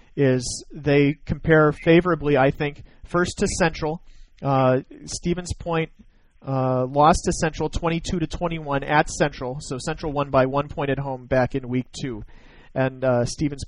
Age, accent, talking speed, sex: 40-59, American, 155 wpm, male